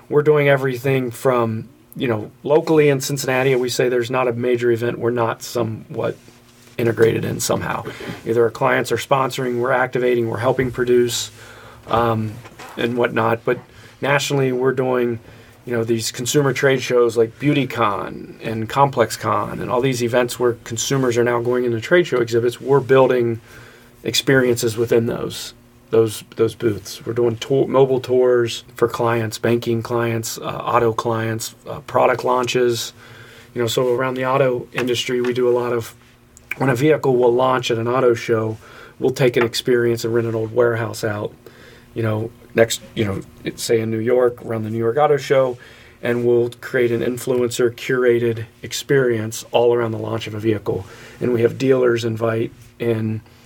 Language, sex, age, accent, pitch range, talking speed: English, male, 40-59, American, 115-125 Hz, 170 wpm